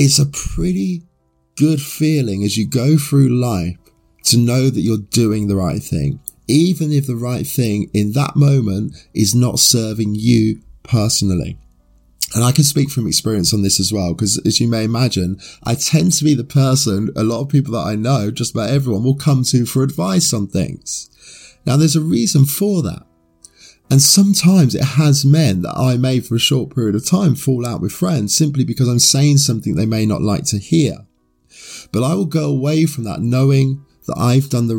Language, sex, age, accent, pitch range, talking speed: English, male, 20-39, British, 105-140 Hz, 200 wpm